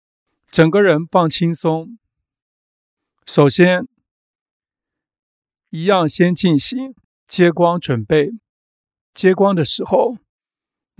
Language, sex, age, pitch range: Chinese, male, 50-69, 150-195 Hz